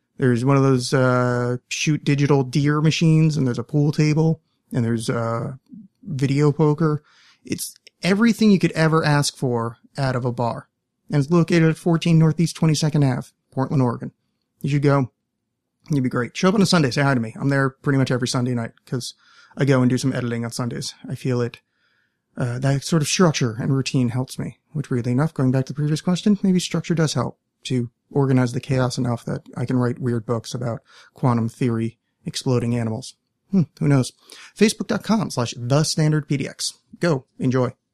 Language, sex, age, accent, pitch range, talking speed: English, male, 30-49, American, 125-155 Hz, 190 wpm